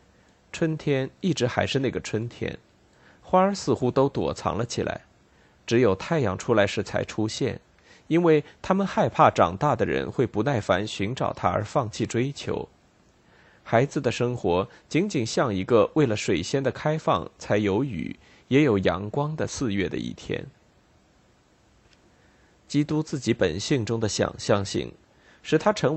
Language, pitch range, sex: Chinese, 105-150 Hz, male